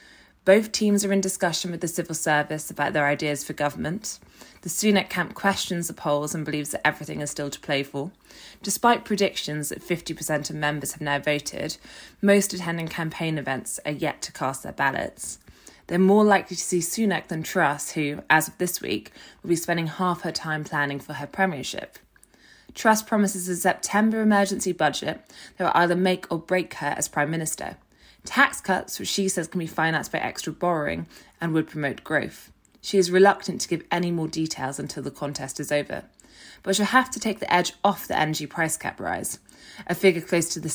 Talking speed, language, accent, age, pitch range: 195 wpm, English, British, 20-39, 150-185 Hz